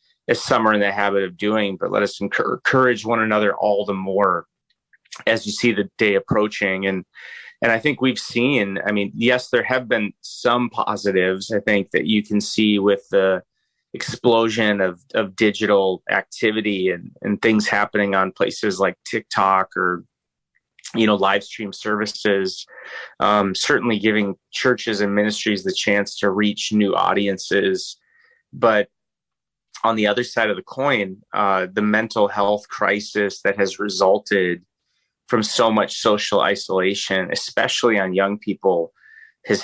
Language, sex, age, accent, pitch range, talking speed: English, male, 30-49, American, 100-115 Hz, 155 wpm